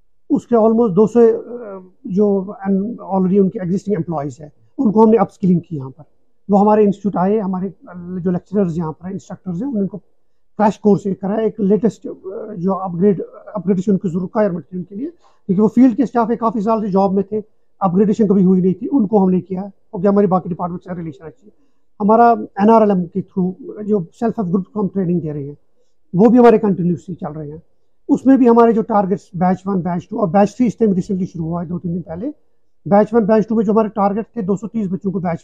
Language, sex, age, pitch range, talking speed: Urdu, male, 50-69, 180-220 Hz, 225 wpm